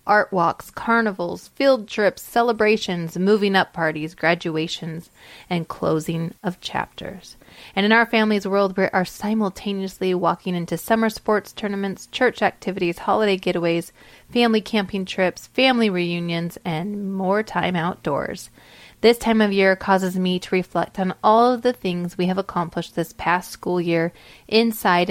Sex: female